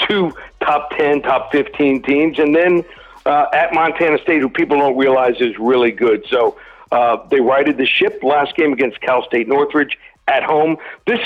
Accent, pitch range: American, 140-190 Hz